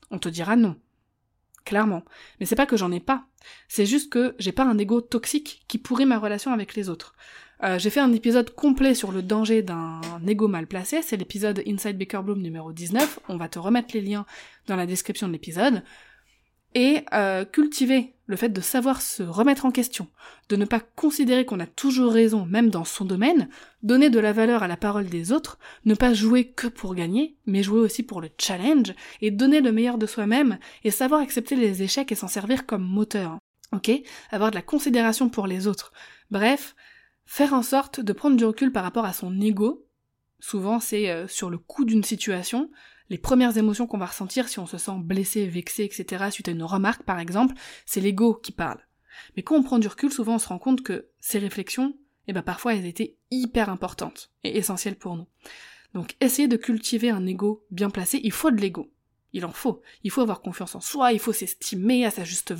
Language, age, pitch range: French, 20-39, 195-250 Hz